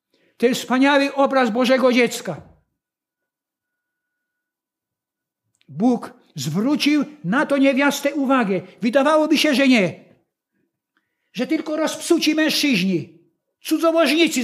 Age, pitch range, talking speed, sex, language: 60-79, 185-275 Hz, 85 wpm, male, Polish